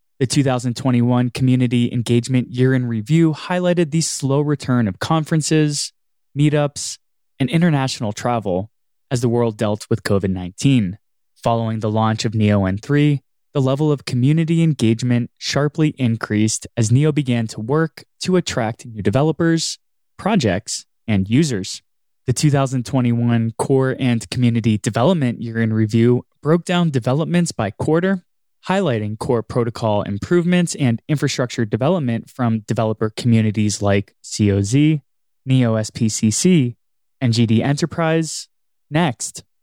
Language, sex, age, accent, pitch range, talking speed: English, male, 20-39, American, 115-150 Hz, 120 wpm